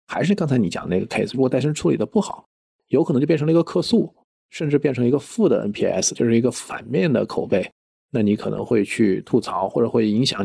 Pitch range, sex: 115-165 Hz, male